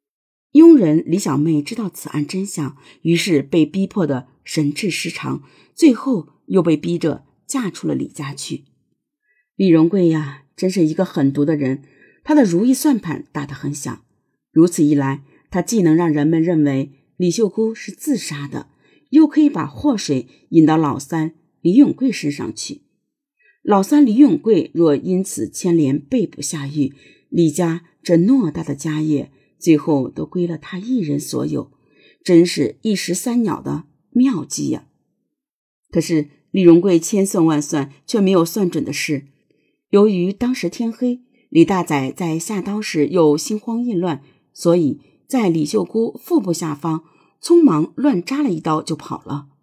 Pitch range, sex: 150-215 Hz, female